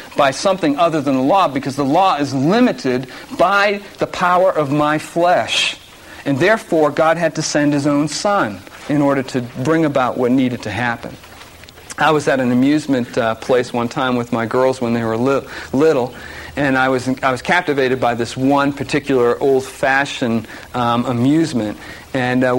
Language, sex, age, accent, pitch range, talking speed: English, male, 50-69, American, 125-155 Hz, 180 wpm